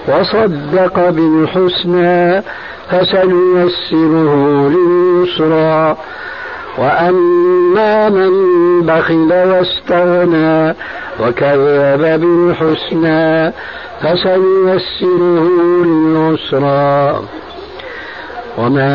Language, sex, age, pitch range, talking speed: Arabic, male, 60-79, 155-180 Hz, 40 wpm